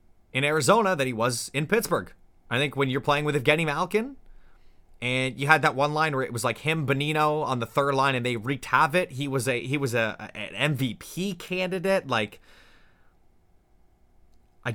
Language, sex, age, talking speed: English, male, 30-49, 185 wpm